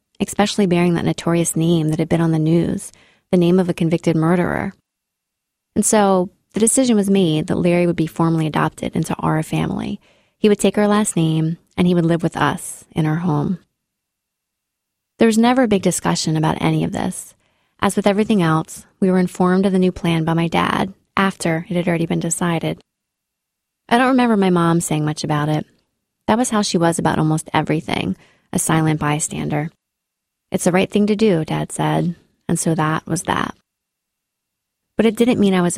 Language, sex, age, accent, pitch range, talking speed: English, female, 20-39, American, 165-200 Hz, 195 wpm